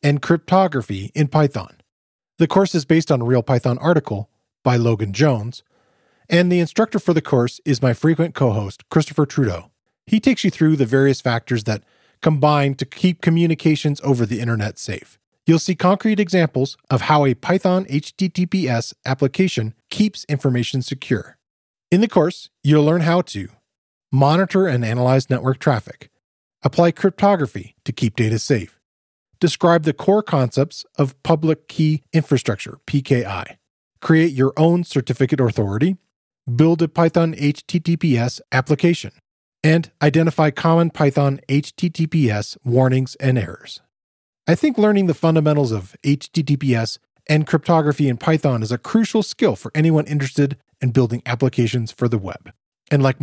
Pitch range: 125-165 Hz